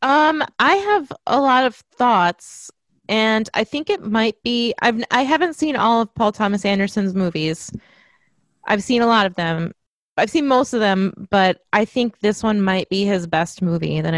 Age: 20-39